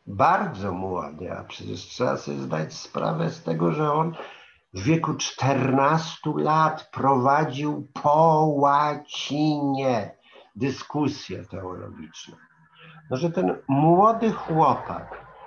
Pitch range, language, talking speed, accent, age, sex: 95-155 Hz, Polish, 95 wpm, native, 50-69, male